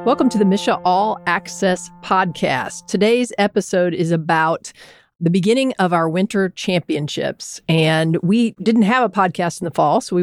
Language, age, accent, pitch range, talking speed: English, 40-59, American, 165-210 Hz, 165 wpm